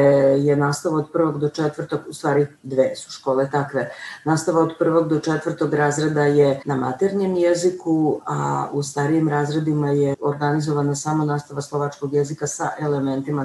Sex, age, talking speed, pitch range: female, 40-59, 150 wpm, 130-160 Hz